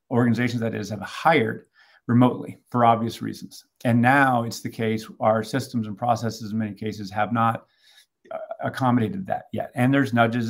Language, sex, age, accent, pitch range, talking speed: English, male, 40-59, American, 110-125 Hz, 165 wpm